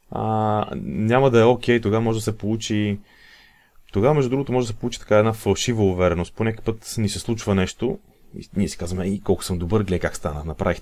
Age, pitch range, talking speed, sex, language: 30-49, 95-115 Hz, 220 wpm, male, Bulgarian